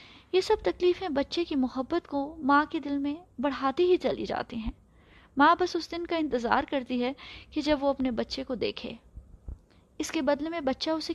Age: 20-39